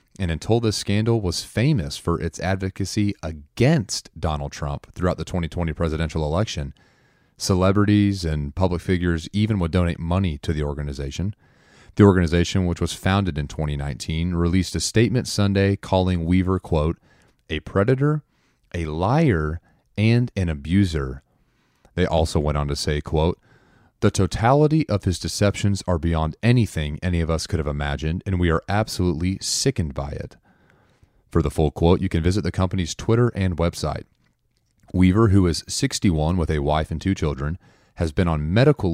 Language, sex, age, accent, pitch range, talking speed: English, male, 30-49, American, 80-100 Hz, 160 wpm